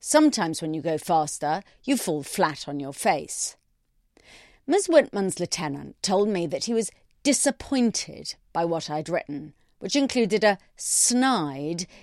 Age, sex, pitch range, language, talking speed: 40-59, female, 160-235 Hz, English, 140 wpm